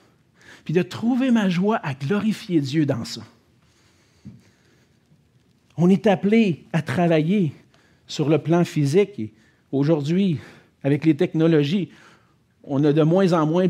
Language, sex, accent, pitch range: French, male, Canadian, 140-200 Hz